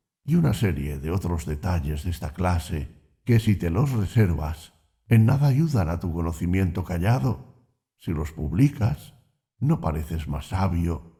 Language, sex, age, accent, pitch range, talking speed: Spanish, male, 60-79, Spanish, 85-130 Hz, 150 wpm